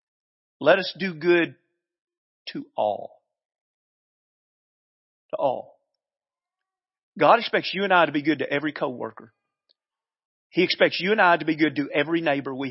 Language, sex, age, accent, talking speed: English, male, 40-59, American, 145 wpm